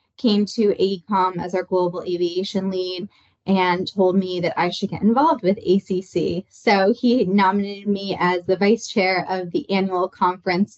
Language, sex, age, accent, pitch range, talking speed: English, female, 20-39, American, 190-220 Hz, 165 wpm